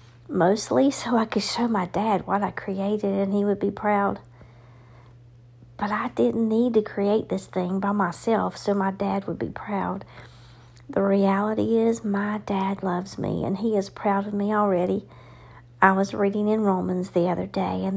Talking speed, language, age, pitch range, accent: 180 wpm, English, 50-69, 175-215 Hz, American